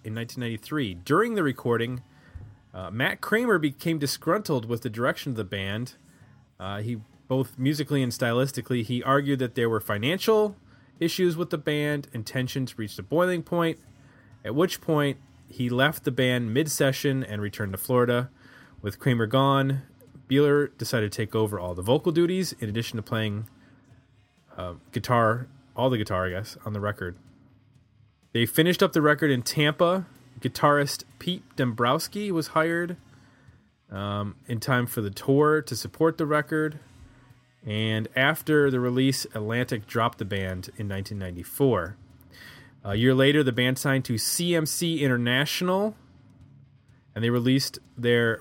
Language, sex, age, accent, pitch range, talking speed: English, male, 20-39, American, 115-145 Hz, 150 wpm